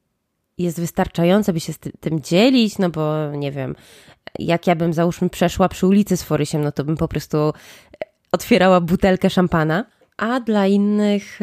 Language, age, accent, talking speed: Polish, 20-39, native, 165 wpm